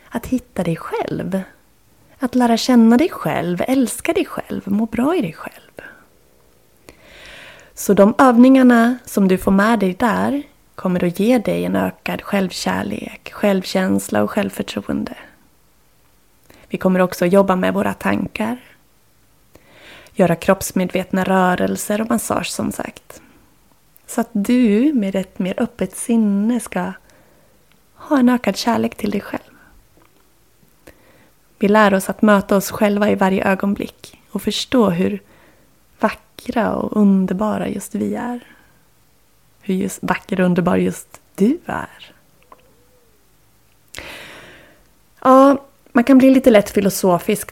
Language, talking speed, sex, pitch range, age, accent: Swedish, 130 wpm, female, 185-245 Hz, 20-39, native